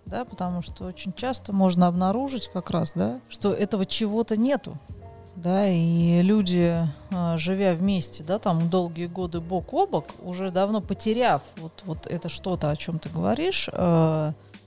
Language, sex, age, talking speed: Russian, female, 30-49, 150 wpm